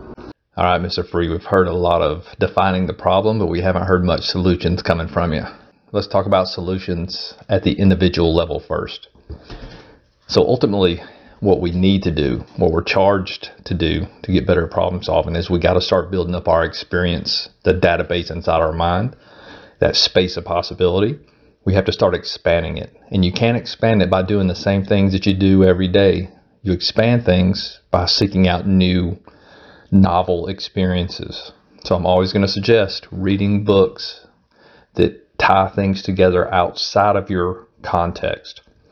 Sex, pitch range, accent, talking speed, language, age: male, 90-100 Hz, American, 170 wpm, English, 40-59